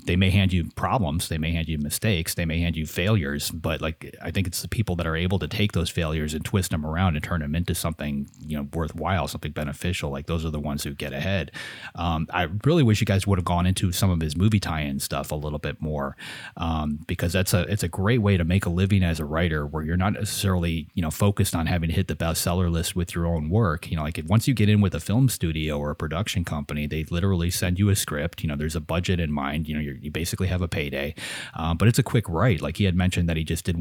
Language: English